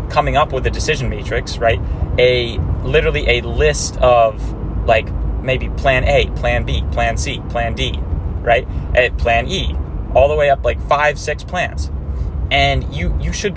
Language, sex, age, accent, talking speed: English, male, 30-49, American, 165 wpm